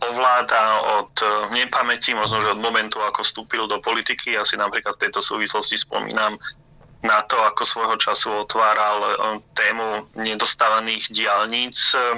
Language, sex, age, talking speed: Slovak, male, 30-49, 130 wpm